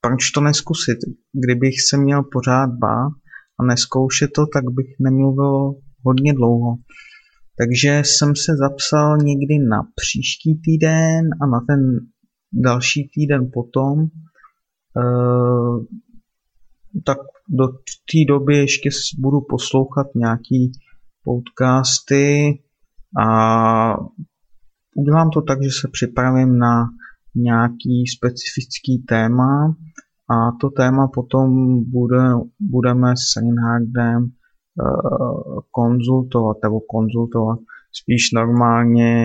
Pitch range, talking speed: 120-140 Hz, 100 wpm